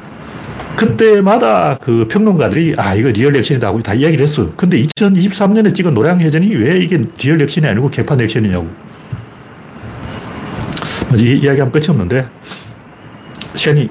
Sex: male